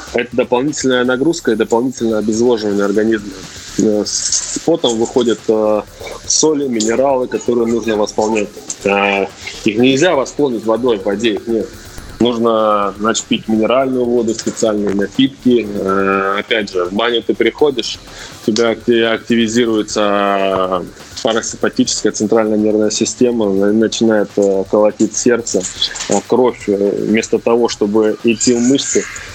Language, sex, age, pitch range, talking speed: Russian, male, 20-39, 105-120 Hz, 110 wpm